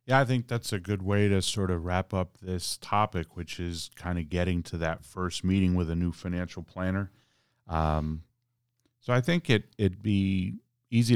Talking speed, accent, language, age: 190 wpm, American, English, 40-59